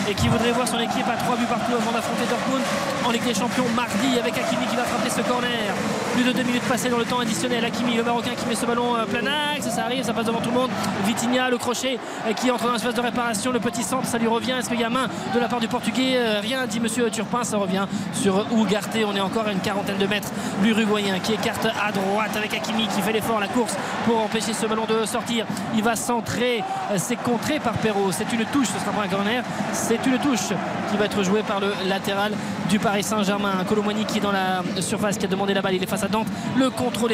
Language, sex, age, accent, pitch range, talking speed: French, male, 20-39, French, 210-245 Hz, 255 wpm